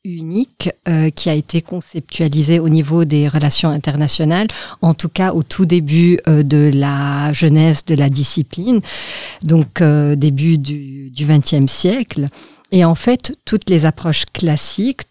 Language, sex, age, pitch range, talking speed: French, female, 50-69, 150-175 Hz, 150 wpm